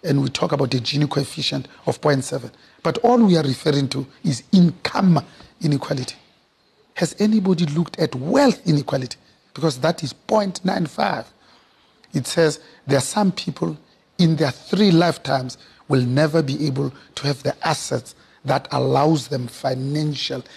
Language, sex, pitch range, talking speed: English, male, 135-160 Hz, 145 wpm